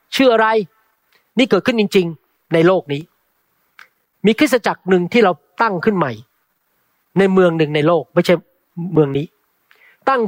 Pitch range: 180-225 Hz